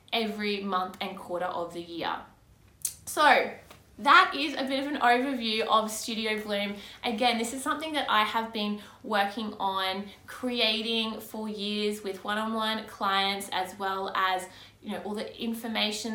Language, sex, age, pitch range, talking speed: English, female, 20-39, 200-240 Hz, 155 wpm